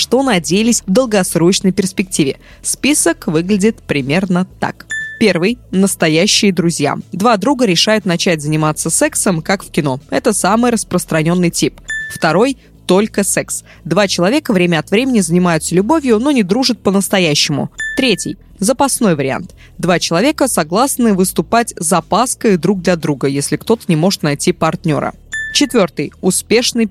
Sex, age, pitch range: female, 20-39, 165-230 Hz